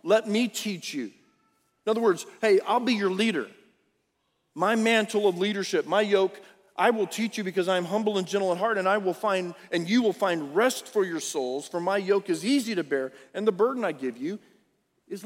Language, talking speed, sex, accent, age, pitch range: English, 220 wpm, male, American, 40-59, 165-220 Hz